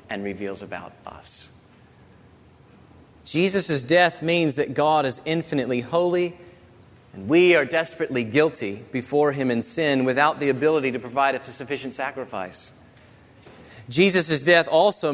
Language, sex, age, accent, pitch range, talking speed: English, male, 40-59, American, 130-175 Hz, 125 wpm